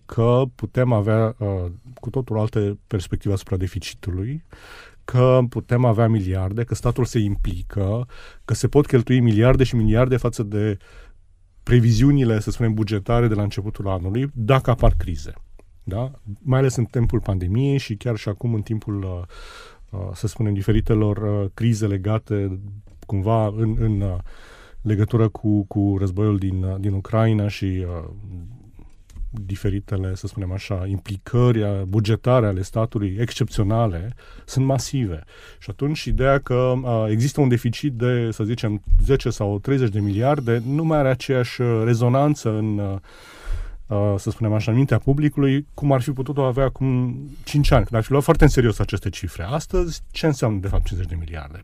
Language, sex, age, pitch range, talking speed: Romanian, male, 30-49, 100-125 Hz, 150 wpm